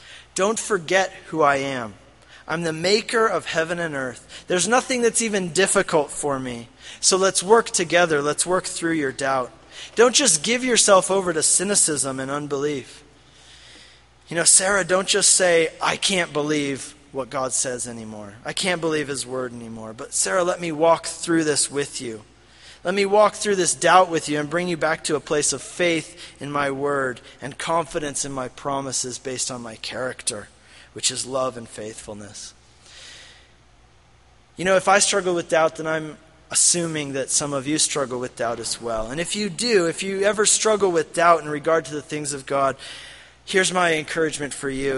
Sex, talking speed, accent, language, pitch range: male, 185 wpm, American, English, 135-180 Hz